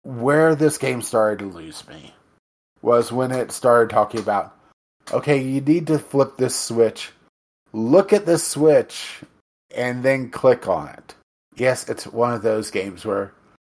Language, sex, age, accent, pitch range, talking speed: English, male, 30-49, American, 100-130 Hz, 160 wpm